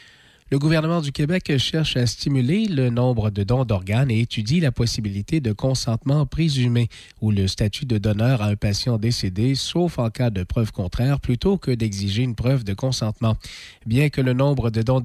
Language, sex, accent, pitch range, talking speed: French, male, Canadian, 110-135 Hz, 185 wpm